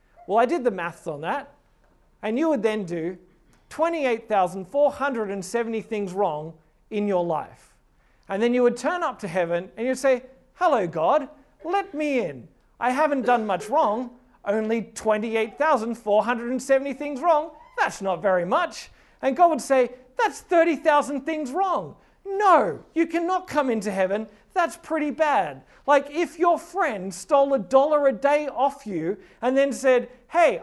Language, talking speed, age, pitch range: English, 155 wpm, 40-59, 215-300 Hz